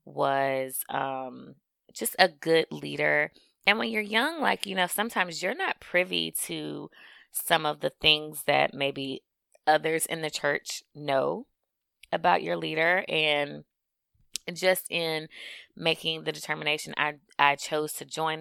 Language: English